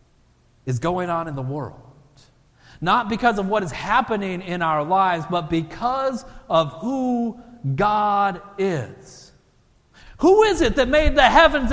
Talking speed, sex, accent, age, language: 145 wpm, male, American, 50-69, English